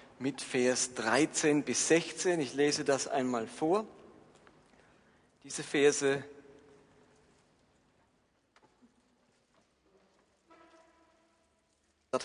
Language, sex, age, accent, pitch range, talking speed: German, male, 40-59, German, 130-175 Hz, 65 wpm